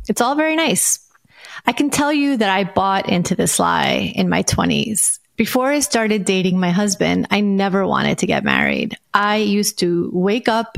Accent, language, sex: American, English, female